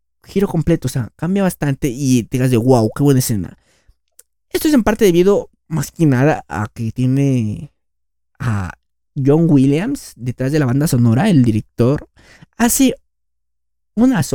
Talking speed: 155 wpm